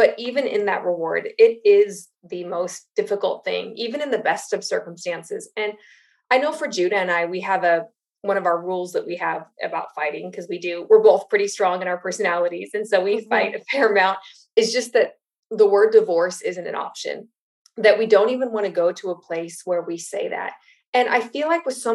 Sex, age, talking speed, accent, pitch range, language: female, 20-39, 225 wpm, American, 190-260 Hz, English